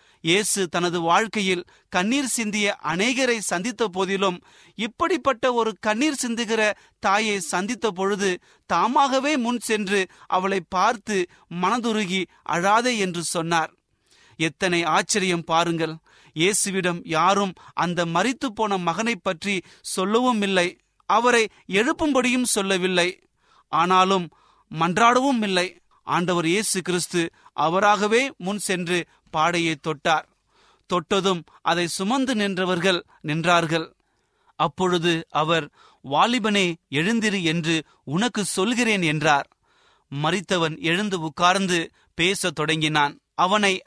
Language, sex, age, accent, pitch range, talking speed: Tamil, male, 30-49, native, 165-210 Hz, 90 wpm